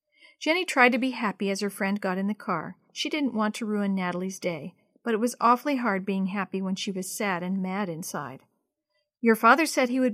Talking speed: 225 wpm